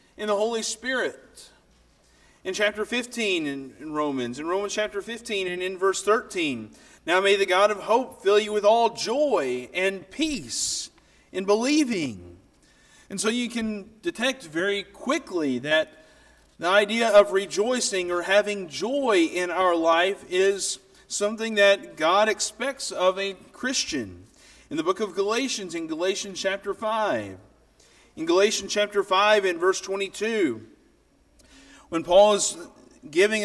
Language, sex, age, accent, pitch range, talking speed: English, male, 40-59, American, 180-225 Hz, 140 wpm